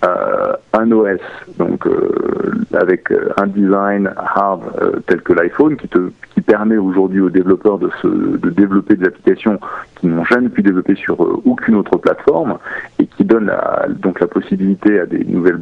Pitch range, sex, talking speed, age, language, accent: 95-130 Hz, male, 170 wpm, 50-69, French, French